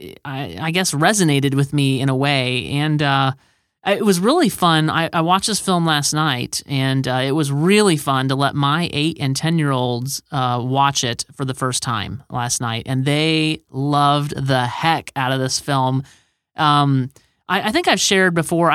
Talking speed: 195 wpm